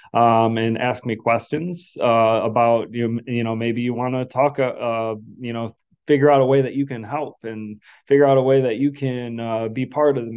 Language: English